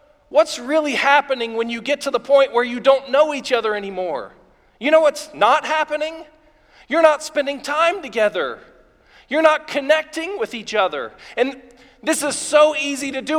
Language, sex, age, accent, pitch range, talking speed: English, male, 40-59, American, 240-300 Hz, 175 wpm